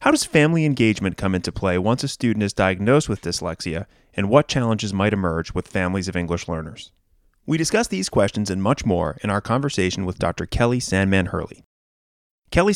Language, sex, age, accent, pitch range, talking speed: English, male, 30-49, American, 90-130 Hz, 190 wpm